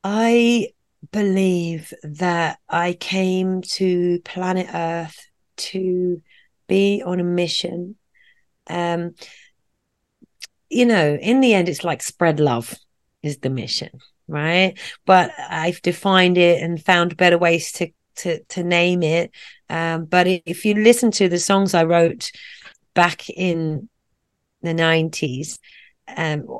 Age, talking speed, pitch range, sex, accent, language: 30-49, 125 wpm, 165-185 Hz, female, British, English